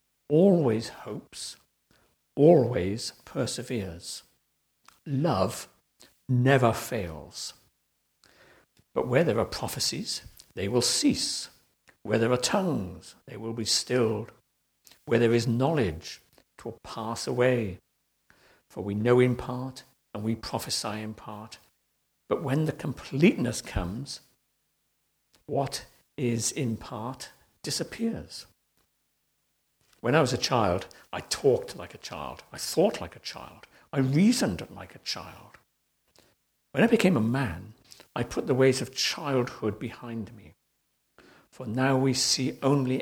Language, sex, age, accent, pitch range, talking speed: English, male, 60-79, British, 110-130 Hz, 125 wpm